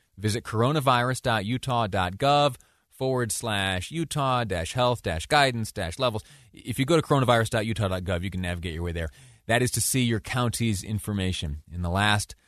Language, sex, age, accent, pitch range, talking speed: English, male, 30-49, American, 95-115 Hz, 155 wpm